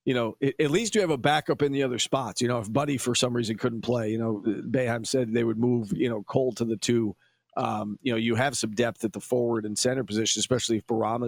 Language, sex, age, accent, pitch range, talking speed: English, male, 40-59, American, 115-140 Hz, 265 wpm